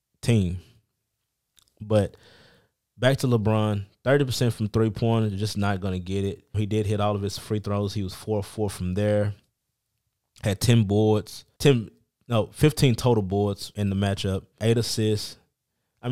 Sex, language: male, English